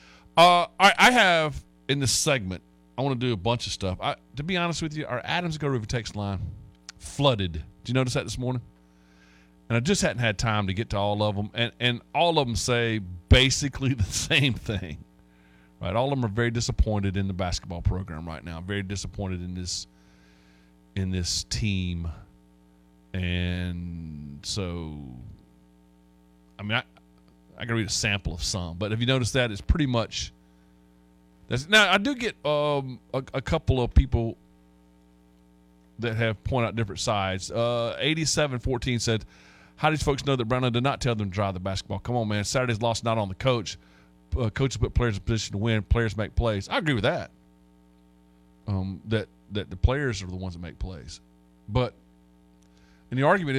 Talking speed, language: 190 wpm, English